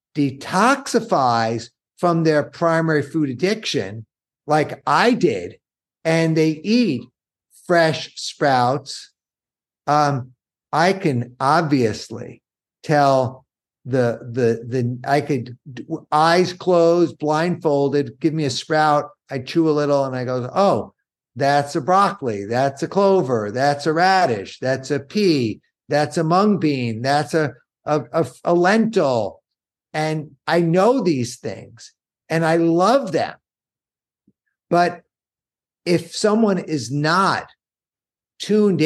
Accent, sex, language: American, male, English